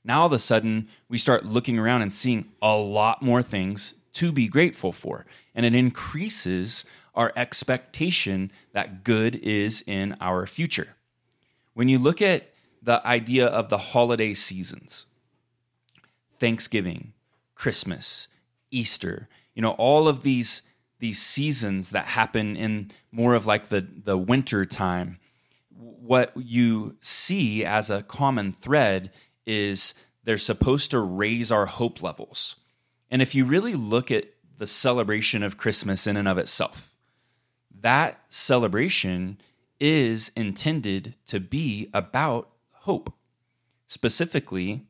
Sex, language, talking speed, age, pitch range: male, English, 130 wpm, 20-39, 105-125 Hz